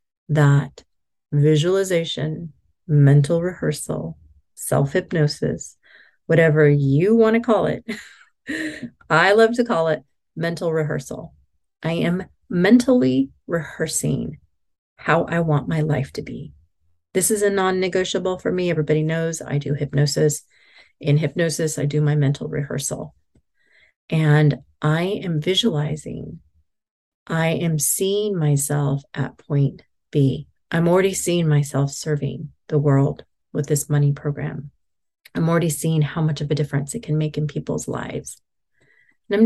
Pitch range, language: 145-185 Hz, English